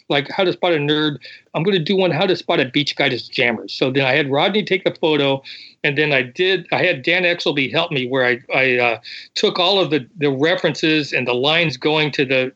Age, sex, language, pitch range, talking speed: 40-59, male, English, 135-175 Hz, 255 wpm